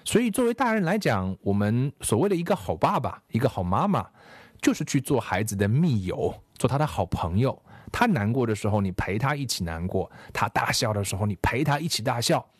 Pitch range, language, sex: 100-150 Hz, Chinese, male